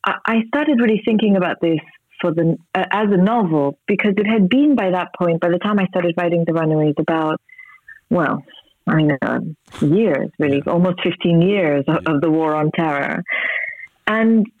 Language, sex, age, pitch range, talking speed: English, female, 40-59, 165-215 Hz, 175 wpm